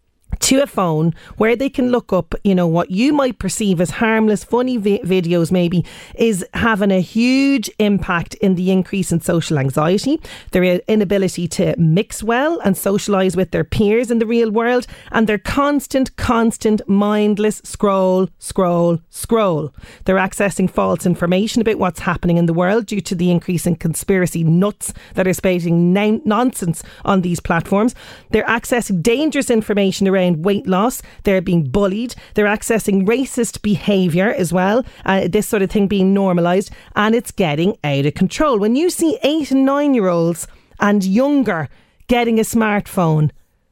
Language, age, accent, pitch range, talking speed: English, 30-49, Irish, 180-230 Hz, 165 wpm